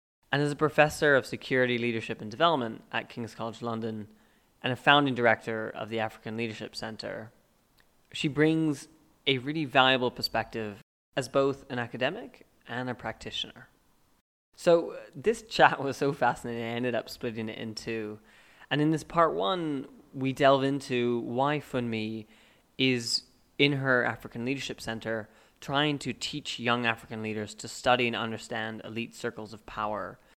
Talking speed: 155 wpm